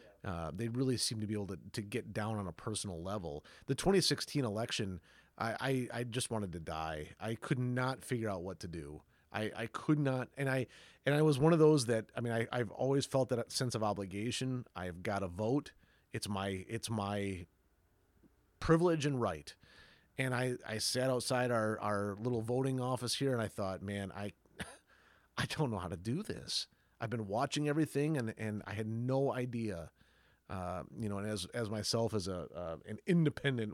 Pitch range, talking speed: 95-130 Hz, 200 wpm